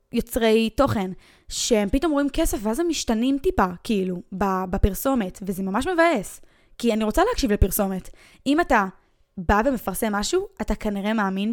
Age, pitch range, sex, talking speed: 10-29, 205-270 Hz, female, 145 wpm